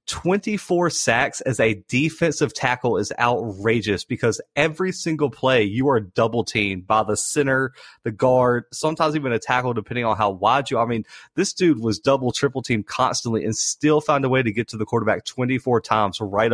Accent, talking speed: American, 185 wpm